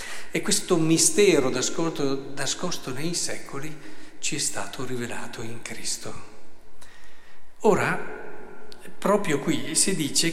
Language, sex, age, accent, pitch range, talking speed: Italian, male, 50-69, native, 120-160 Hz, 100 wpm